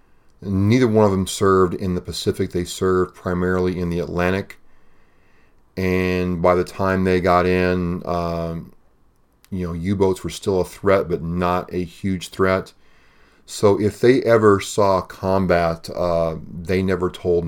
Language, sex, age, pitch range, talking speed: English, male, 40-59, 85-95 Hz, 150 wpm